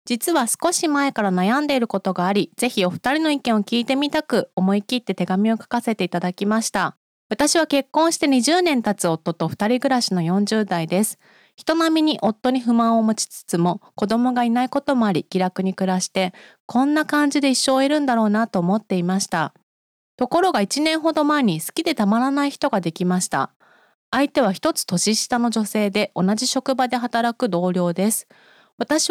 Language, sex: Japanese, female